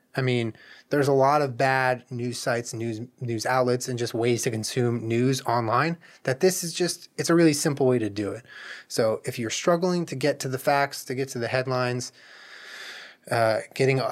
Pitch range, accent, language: 120-150 Hz, American, English